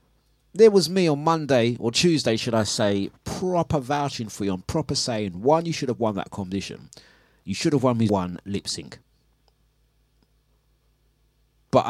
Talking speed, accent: 165 wpm, British